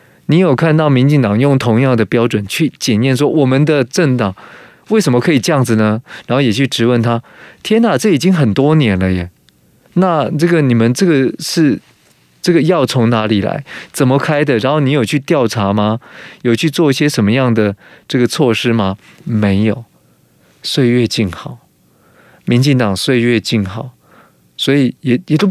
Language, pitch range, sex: Chinese, 105-140 Hz, male